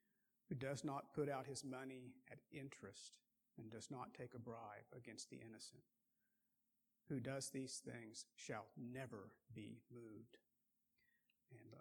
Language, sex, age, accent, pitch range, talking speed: English, male, 50-69, American, 120-155 Hz, 135 wpm